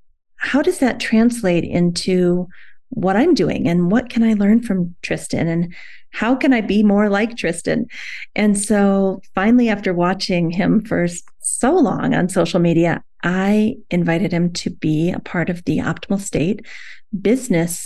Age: 30-49